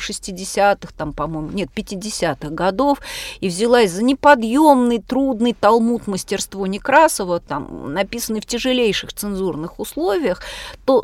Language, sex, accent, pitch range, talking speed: Russian, female, native, 190-260 Hz, 115 wpm